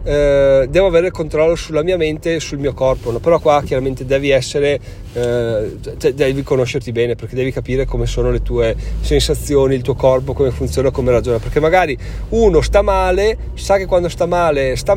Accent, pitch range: native, 130-170 Hz